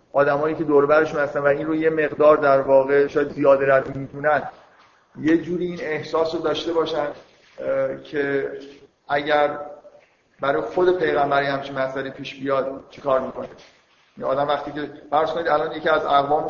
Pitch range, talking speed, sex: 145-170 Hz, 165 wpm, male